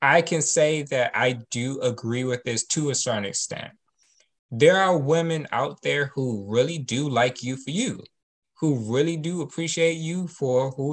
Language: English